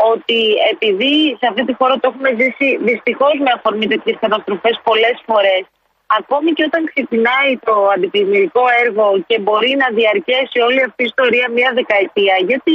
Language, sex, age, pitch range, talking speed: Greek, female, 30-49, 230-295 Hz, 160 wpm